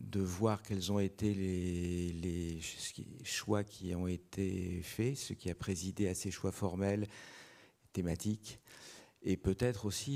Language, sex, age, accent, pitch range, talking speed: French, male, 50-69, French, 90-110 Hz, 140 wpm